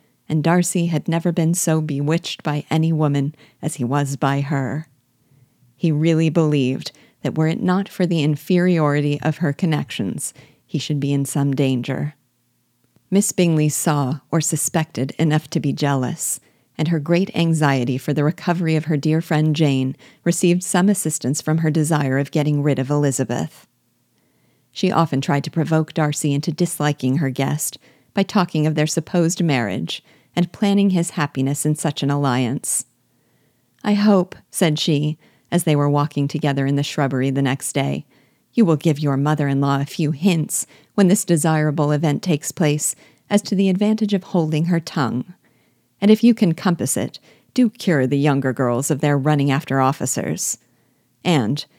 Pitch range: 140-170 Hz